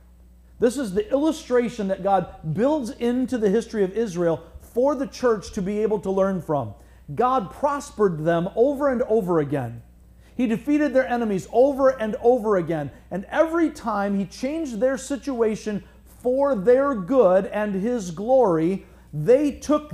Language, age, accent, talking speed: English, 50-69, American, 155 wpm